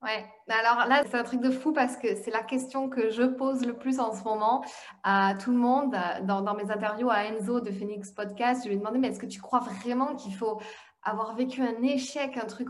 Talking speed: 245 wpm